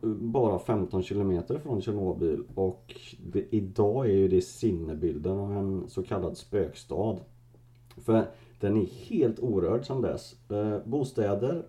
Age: 30-49